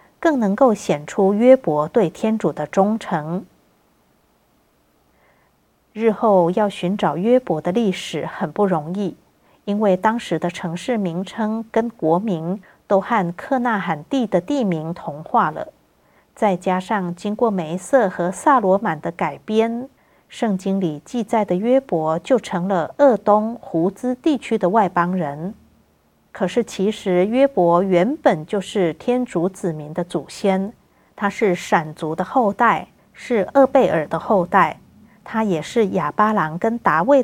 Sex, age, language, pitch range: female, 50-69, Chinese, 175-230 Hz